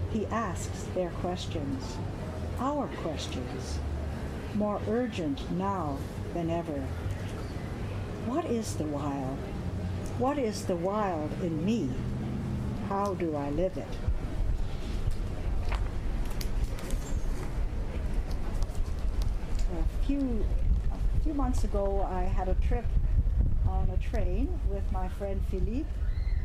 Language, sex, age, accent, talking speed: English, female, 60-79, American, 95 wpm